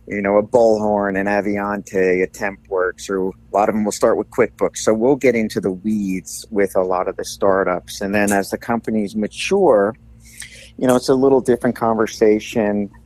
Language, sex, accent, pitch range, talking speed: English, male, American, 95-110 Hz, 195 wpm